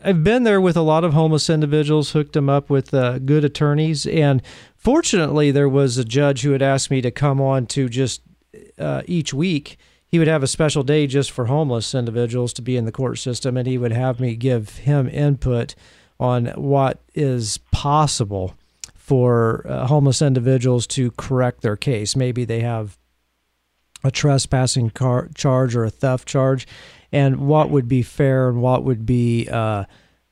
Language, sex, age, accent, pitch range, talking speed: English, male, 40-59, American, 120-150 Hz, 180 wpm